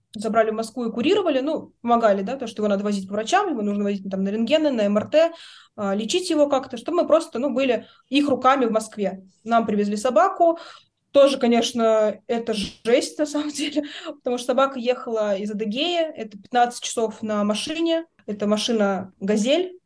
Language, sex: Russian, female